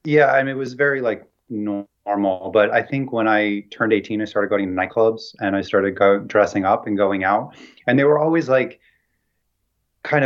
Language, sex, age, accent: English, male, 30-49, American